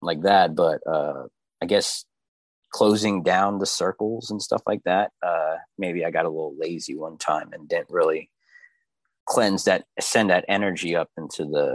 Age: 30-49